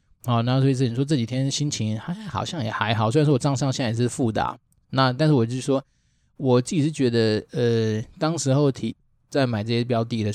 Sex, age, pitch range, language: male, 20-39, 110-130 Hz, Chinese